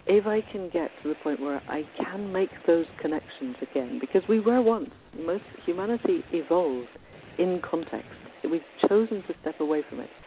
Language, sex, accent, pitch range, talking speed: English, female, British, 145-190 Hz, 175 wpm